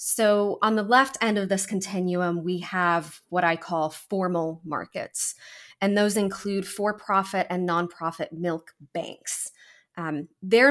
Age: 30-49